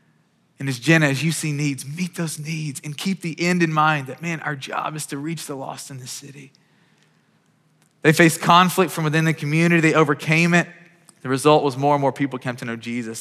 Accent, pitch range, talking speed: American, 120-155 Hz, 225 wpm